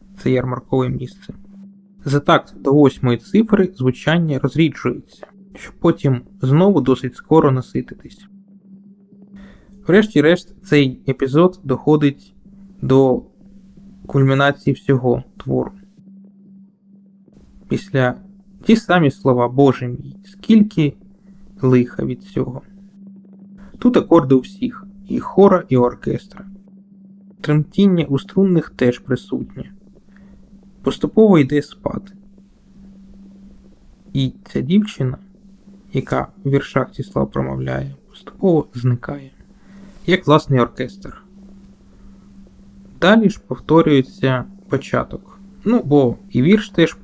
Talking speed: 95 wpm